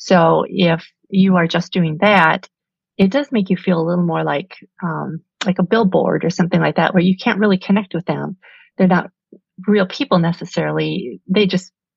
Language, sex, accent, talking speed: English, female, American, 190 wpm